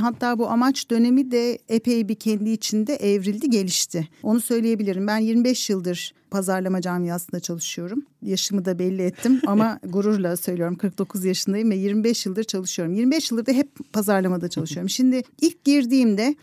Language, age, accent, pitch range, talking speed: Turkish, 50-69, native, 195-265 Hz, 150 wpm